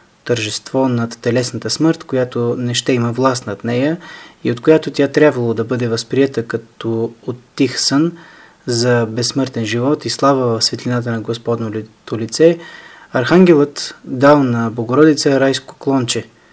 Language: Bulgarian